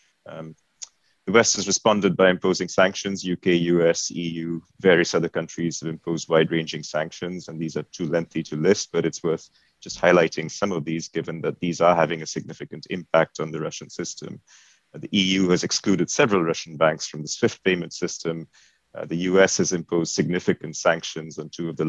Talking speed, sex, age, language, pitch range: 190 wpm, male, 30-49, English, 80-90 Hz